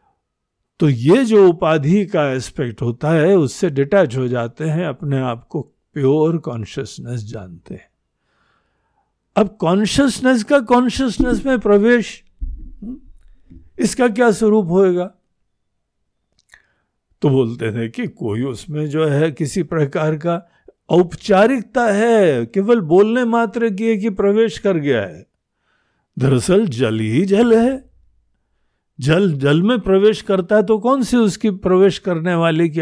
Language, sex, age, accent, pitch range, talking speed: Hindi, male, 60-79, native, 125-195 Hz, 130 wpm